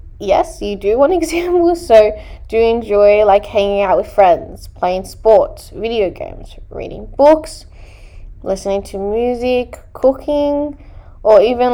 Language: English